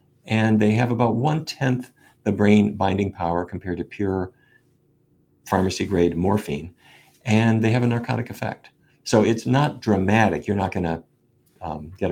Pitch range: 85-110 Hz